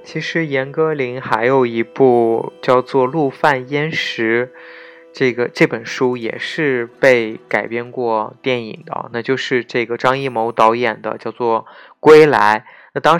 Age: 20-39